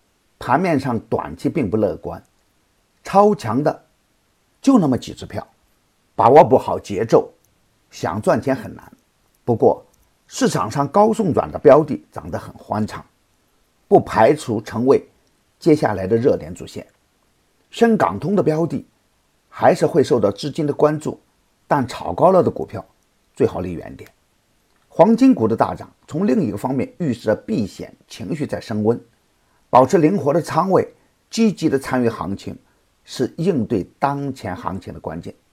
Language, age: Chinese, 50-69